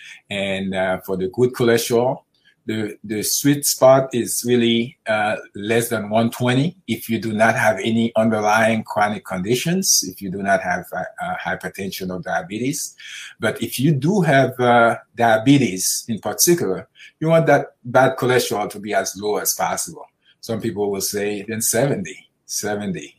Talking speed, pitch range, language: 160 wpm, 105-130 Hz, English